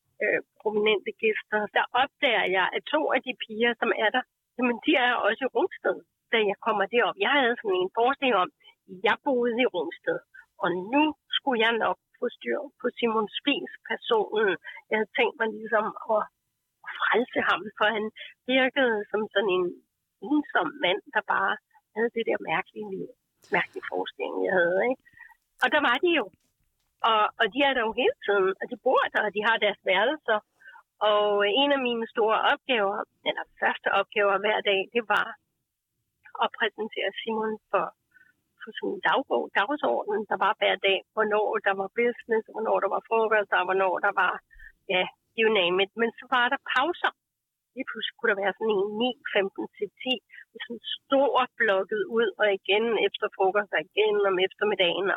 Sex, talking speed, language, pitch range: female, 175 wpm, Danish, 205-275 Hz